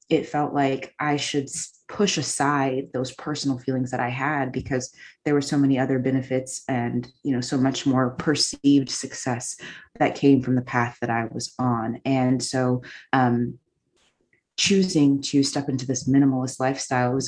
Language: English